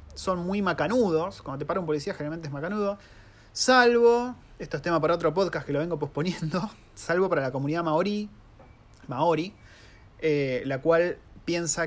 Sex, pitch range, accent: male, 150-185 Hz, Argentinian